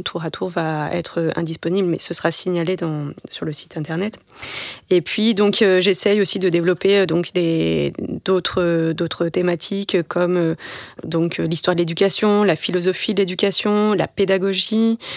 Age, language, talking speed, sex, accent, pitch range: 20-39, French, 170 wpm, female, French, 165-195 Hz